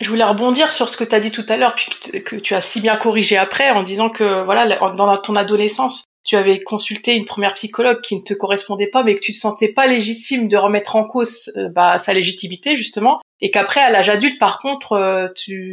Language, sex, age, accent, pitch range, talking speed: French, female, 20-39, French, 200-235 Hz, 250 wpm